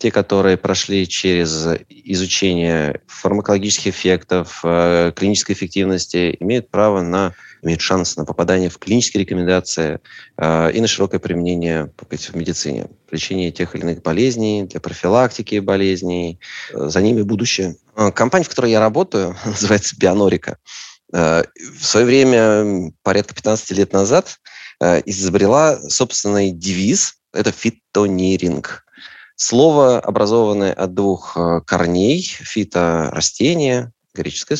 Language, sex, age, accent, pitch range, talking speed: Russian, male, 30-49, native, 85-105 Hz, 110 wpm